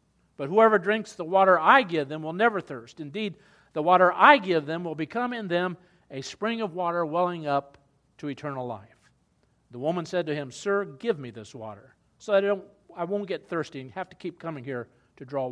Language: English